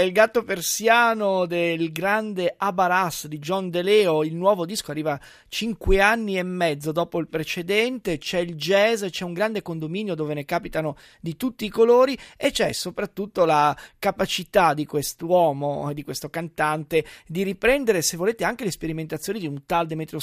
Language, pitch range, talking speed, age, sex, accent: Italian, 160-210 Hz, 170 wpm, 30-49, male, native